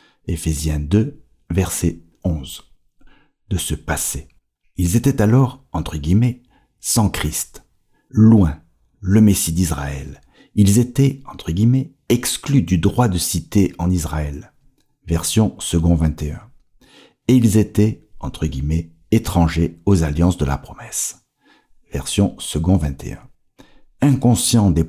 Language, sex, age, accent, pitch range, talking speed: French, male, 60-79, French, 80-115 Hz, 125 wpm